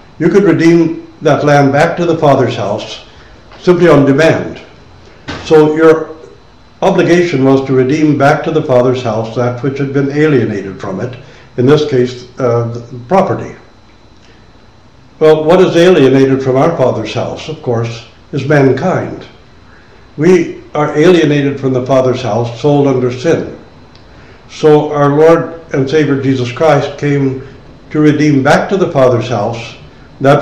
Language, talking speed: English, 145 wpm